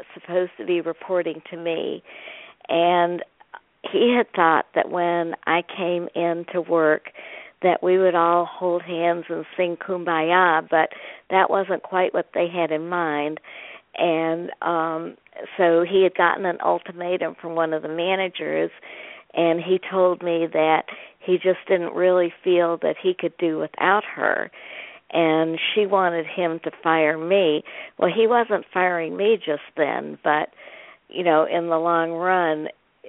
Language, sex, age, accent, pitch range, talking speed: English, female, 60-79, American, 165-185 Hz, 155 wpm